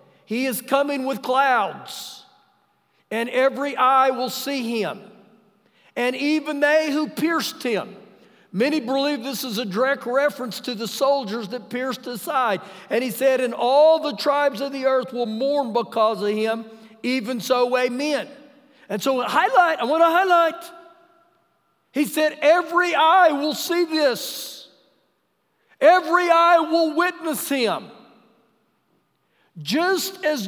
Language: English